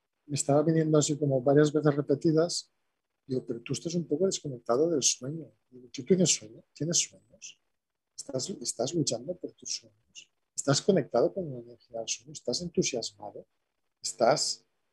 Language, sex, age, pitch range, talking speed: Spanish, male, 40-59, 130-155 Hz, 155 wpm